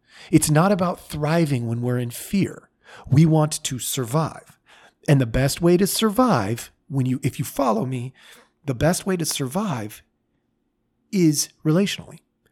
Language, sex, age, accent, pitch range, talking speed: English, male, 40-59, American, 120-155 Hz, 150 wpm